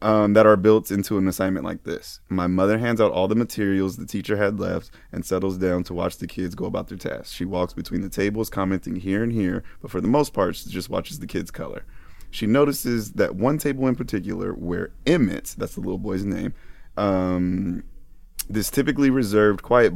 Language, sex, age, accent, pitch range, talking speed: English, male, 30-49, American, 90-110 Hz, 210 wpm